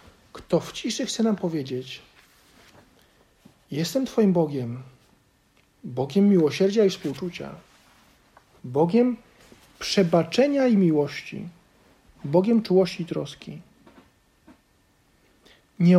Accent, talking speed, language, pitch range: native, 85 wpm, Polish, 165-225 Hz